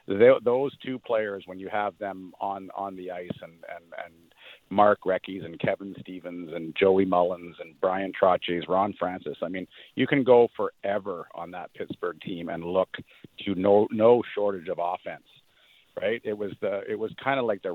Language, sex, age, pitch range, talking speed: English, male, 50-69, 90-100 Hz, 185 wpm